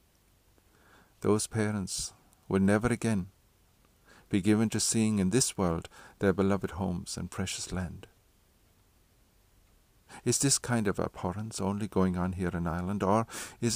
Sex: male